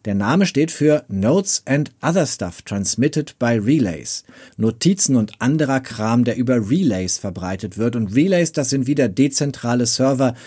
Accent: German